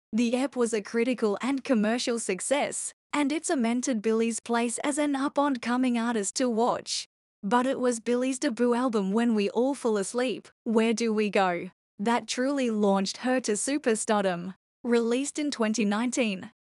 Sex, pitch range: female, 225-260 Hz